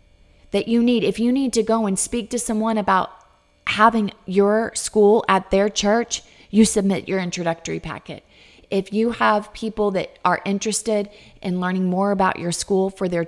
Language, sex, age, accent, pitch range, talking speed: English, female, 30-49, American, 180-220 Hz, 175 wpm